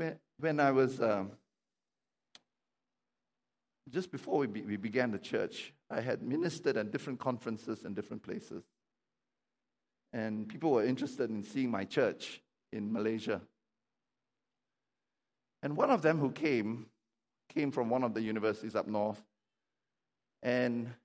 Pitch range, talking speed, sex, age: 110-135 Hz, 130 wpm, male, 60-79